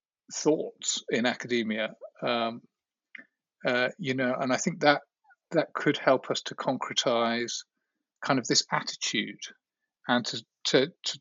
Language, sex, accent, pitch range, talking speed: English, male, British, 120-150 Hz, 135 wpm